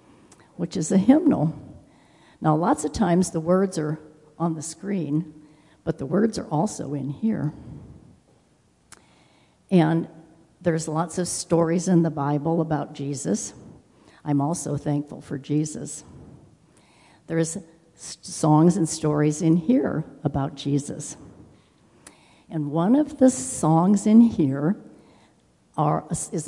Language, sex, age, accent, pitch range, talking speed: English, female, 60-79, American, 150-190 Hz, 120 wpm